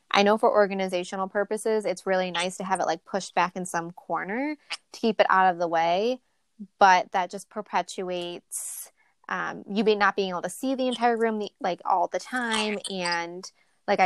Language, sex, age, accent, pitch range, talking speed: English, female, 20-39, American, 185-220 Hz, 190 wpm